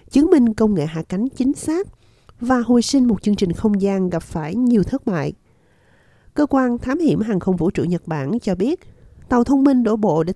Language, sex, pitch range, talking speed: Vietnamese, female, 185-245 Hz, 225 wpm